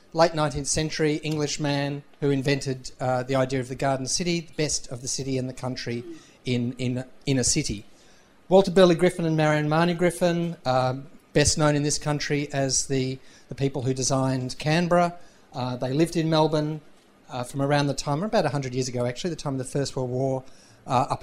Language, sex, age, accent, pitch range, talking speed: English, male, 40-59, Australian, 135-155 Hz, 200 wpm